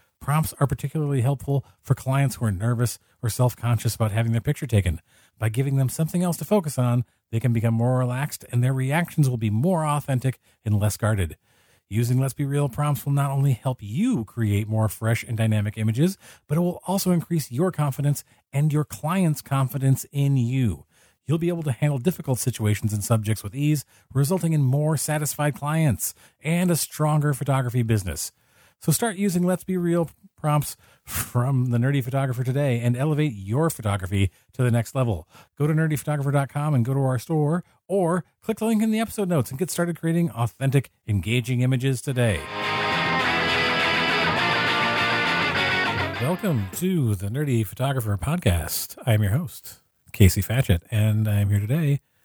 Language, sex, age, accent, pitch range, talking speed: English, male, 40-59, American, 110-150 Hz, 170 wpm